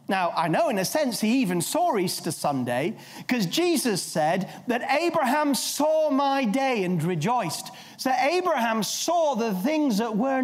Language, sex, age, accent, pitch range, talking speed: English, male, 40-59, British, 200-275 Hz, 160 wpm